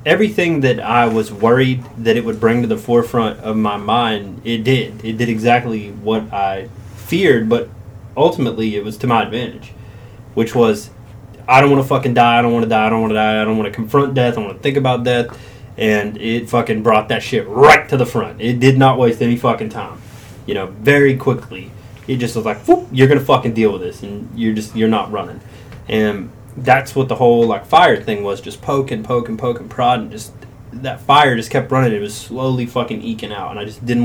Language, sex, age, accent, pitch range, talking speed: English, male, 20-39, American, 110-125 Hz, 225 wpm